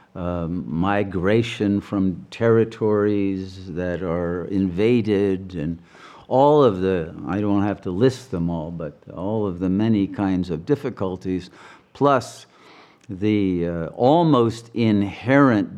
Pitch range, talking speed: 90-110 Hz, 120 wpm